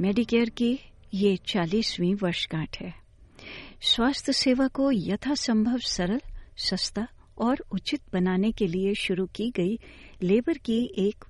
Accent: native